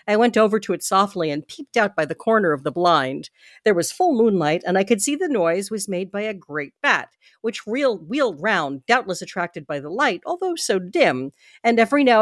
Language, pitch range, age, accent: English, 165-250 Hz, 50-69, American